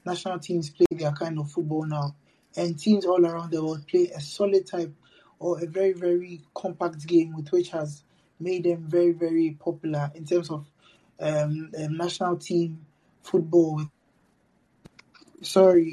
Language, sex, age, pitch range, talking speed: English, male, 20-39, 155-180 Hz, 150 wpm